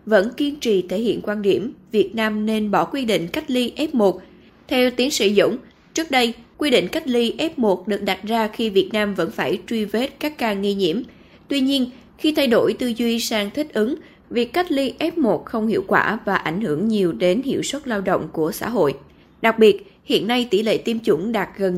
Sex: female